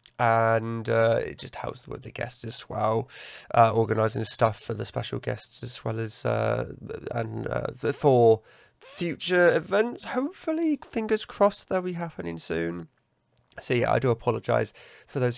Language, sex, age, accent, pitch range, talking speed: English, male, 20-39, British, 115-145 Hz, 160 wpm